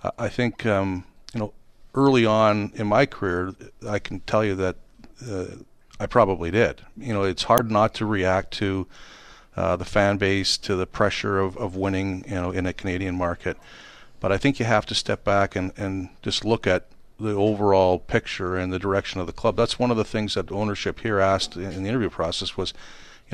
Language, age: English, 50-69